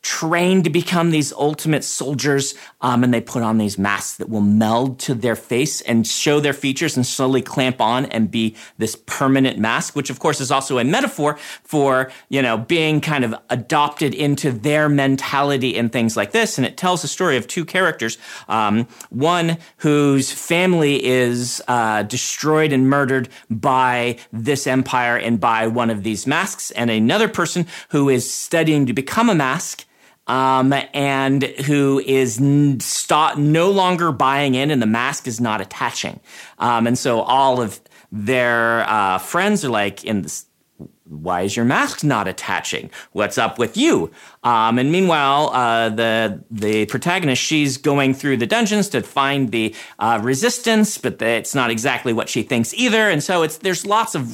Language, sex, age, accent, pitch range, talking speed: English, male, 40-59, American, 120-155 Hz, 175 wpm